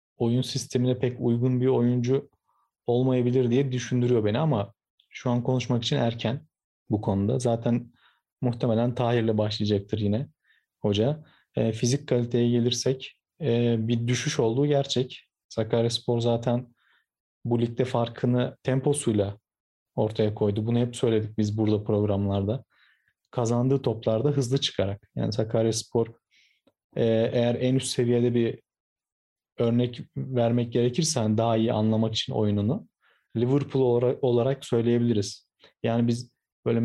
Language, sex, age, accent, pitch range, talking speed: Turkish, male, 40-59, native, 115-130 Hz, 120 wpm